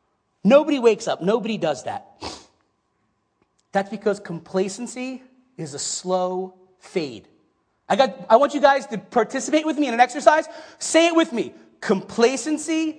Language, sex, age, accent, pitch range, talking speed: English, male, 30-49, American, 185-255 Hz, 140 wpm